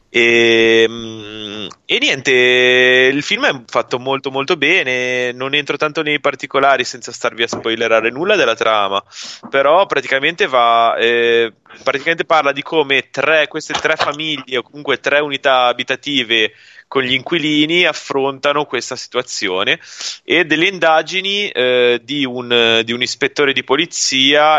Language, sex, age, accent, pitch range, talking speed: Italian, male, 20-39, native, 115-145 Hz, 135 wpm